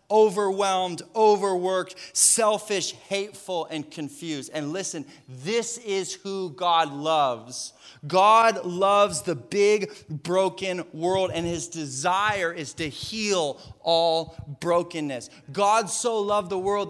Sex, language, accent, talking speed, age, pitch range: male, English, American, 115 wpm, 30-49, 135-195 Hz